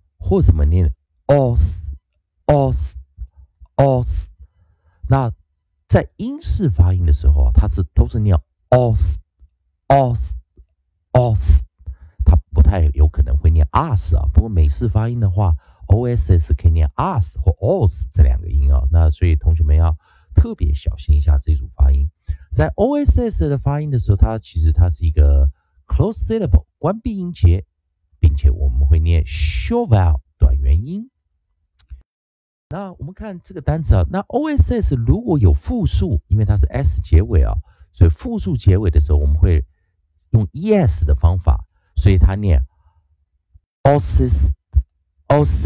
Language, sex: Chinese, male